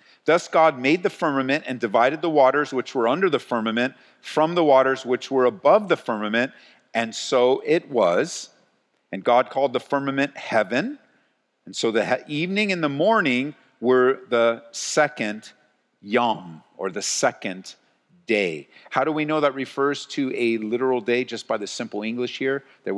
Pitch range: 115-140 Hz